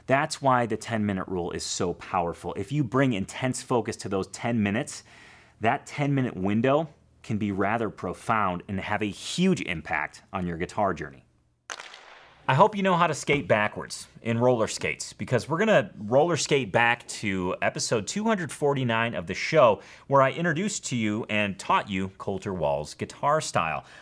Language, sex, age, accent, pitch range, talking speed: English, male, 30-49, American, 100-155 Hz, 175 wpm